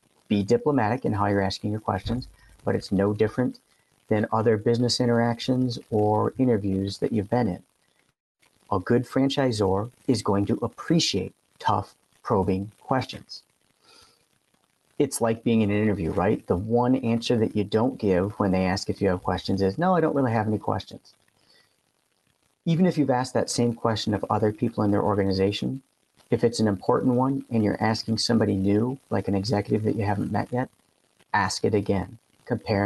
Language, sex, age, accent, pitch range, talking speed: English, male, 40-59, American, 105-125 Hz, 175 wpm